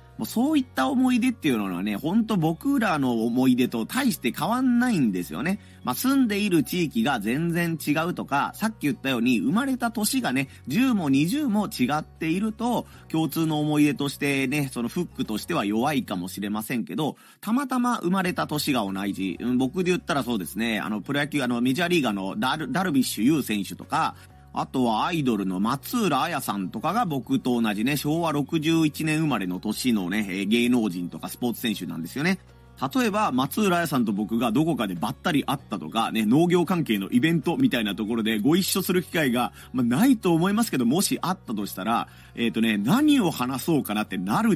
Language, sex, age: Japanese, male, 30-49